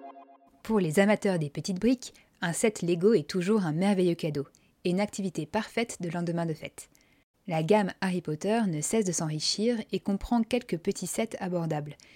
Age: 20-39